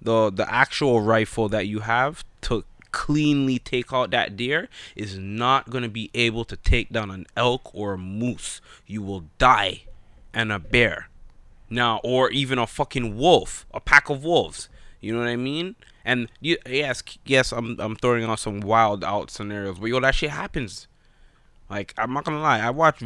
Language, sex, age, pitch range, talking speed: English, male, 20-39, 105-135 Hz, 190 wpm